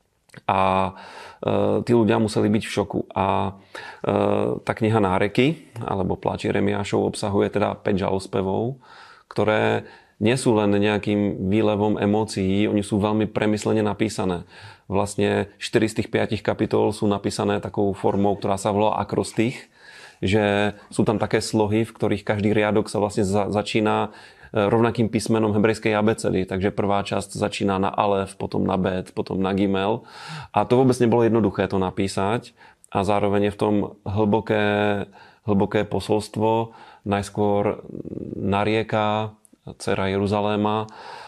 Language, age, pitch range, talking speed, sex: Slovak, 30-49, 100-110 Hz, 135 wpm, male